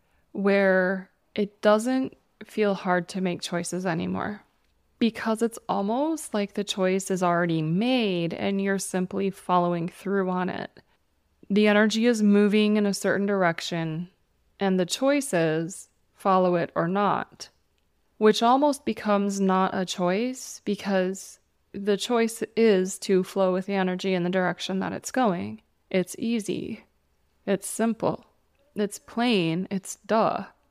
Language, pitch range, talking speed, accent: English, 185-220 Hz, 135 wpm, American